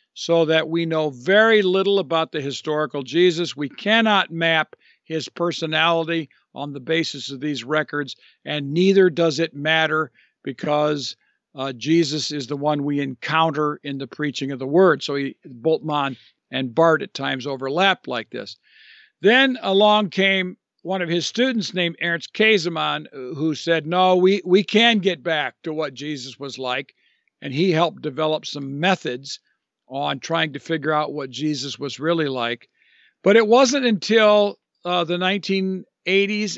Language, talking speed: English, 155 wpm